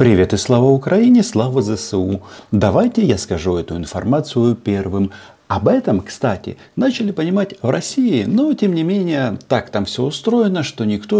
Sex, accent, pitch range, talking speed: male, native, 95-160 Hz, 155 wpm